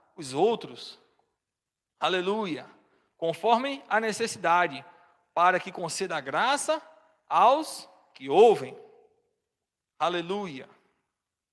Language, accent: Portuguese, Brazilian